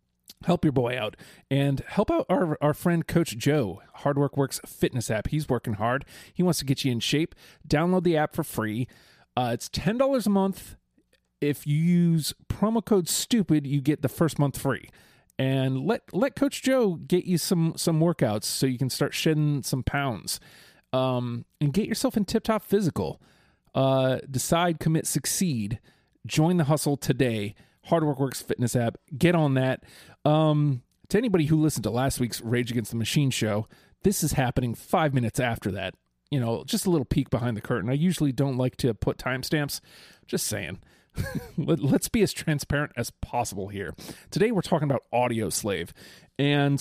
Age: 30-49